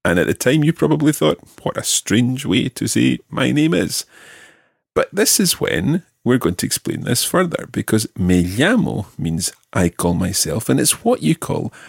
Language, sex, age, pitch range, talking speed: English, male, 40-59, 90-125 Hz, 190 wpm